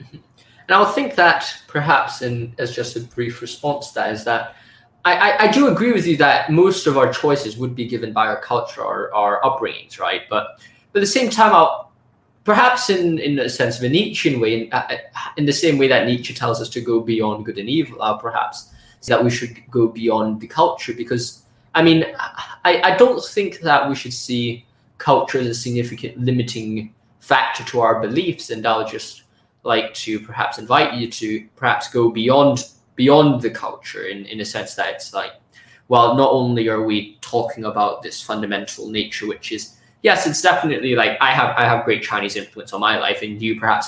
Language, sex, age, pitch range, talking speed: English, male, 20-39, 115-160 Hz, 205 wpm